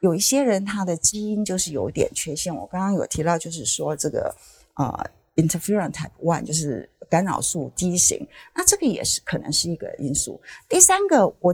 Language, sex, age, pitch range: Chinese, female, 50-69, 160-230 Hz